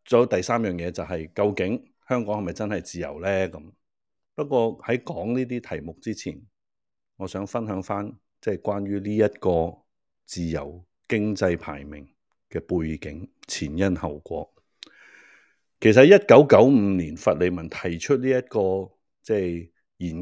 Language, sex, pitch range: Chinese, male, 90-125 Hz